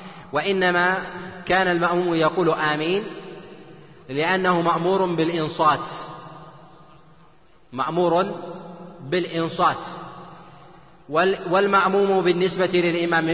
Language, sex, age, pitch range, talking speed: Arabic, male, 40-59, 150-175 Hz, 60 wpm